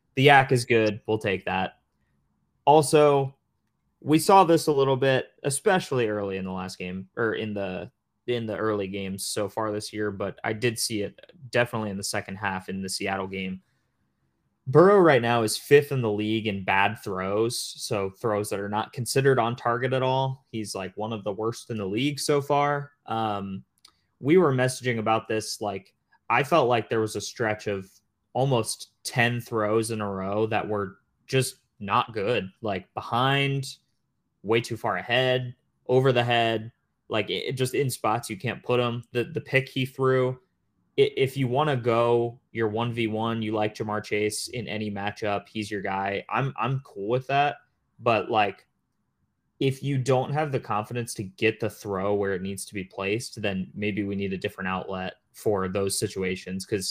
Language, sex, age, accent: English, male, 20-39, American